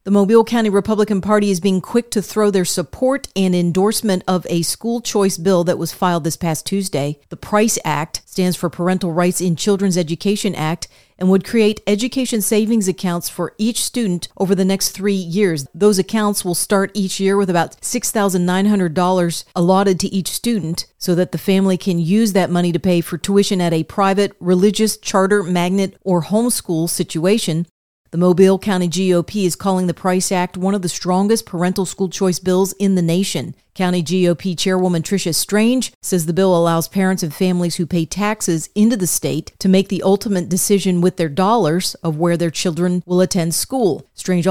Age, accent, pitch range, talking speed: 40-59, American, 175-200 Hz, 185 wpm